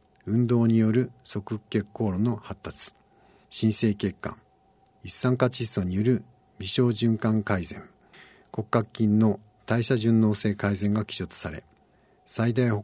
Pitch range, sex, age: 95-115 Hz, male, 60-79